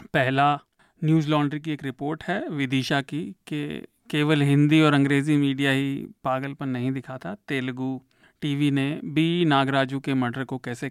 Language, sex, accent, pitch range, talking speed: Hindi, male, native, 130-160 Hz, 160 wpm